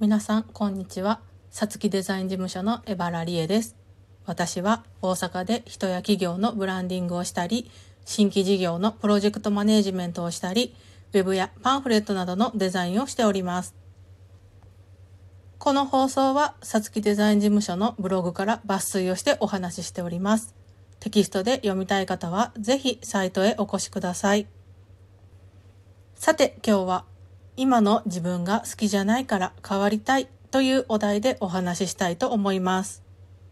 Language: Japanese